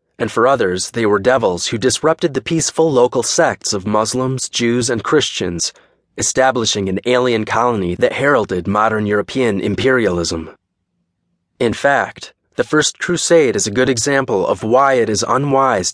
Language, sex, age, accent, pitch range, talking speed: English, male, 30-49, American, 105-130 Hz, 150 wpm